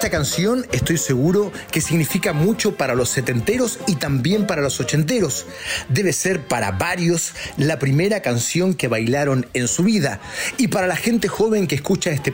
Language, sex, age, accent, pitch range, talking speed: English, male, 40-59, Mexican, 135-185 Hz, 170 wpm